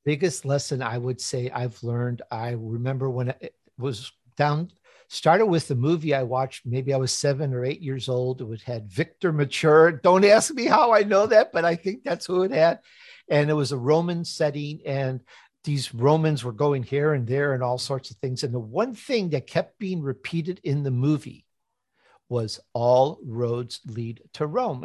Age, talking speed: 50-69, 195 wpm